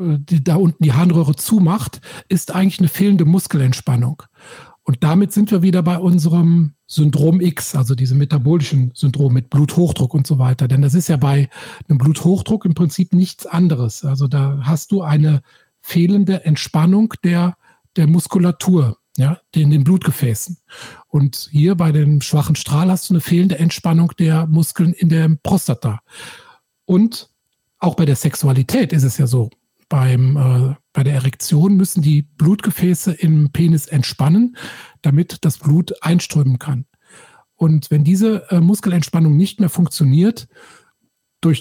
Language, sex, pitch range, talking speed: German, male, 140-175 Hz, 145 wpm